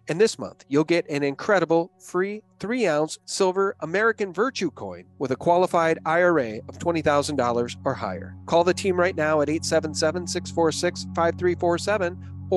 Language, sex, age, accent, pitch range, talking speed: English, male, 40-59, American, 115-170 Hz, 135 wpm